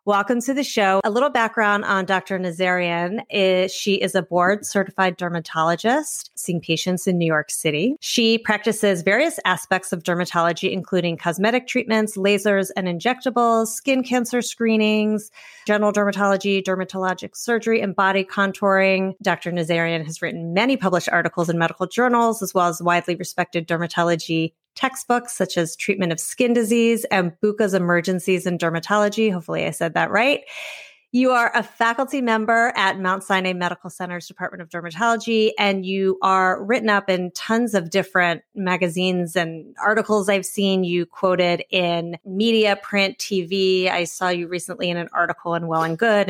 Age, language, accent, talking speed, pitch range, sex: 30-49, English, American, 155 wpm, 175-220 Hz, female